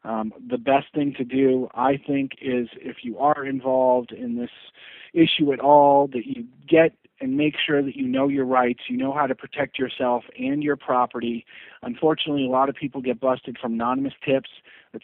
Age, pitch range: 40-59, 125-150 Hz